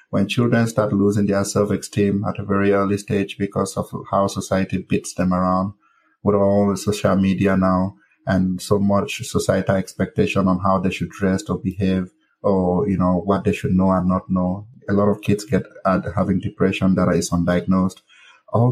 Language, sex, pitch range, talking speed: English, male, 90-100 Hz, 185 wpm